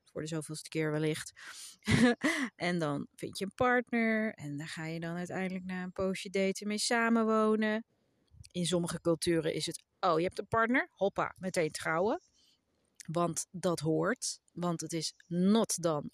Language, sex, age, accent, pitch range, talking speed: Dutch, female, 30-49, Dutch, 170-230 Hz, 165 wpm